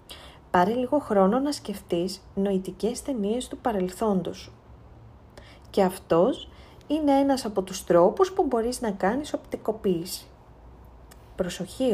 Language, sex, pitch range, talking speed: Greek, female, 175-245 Hz, 115 wpm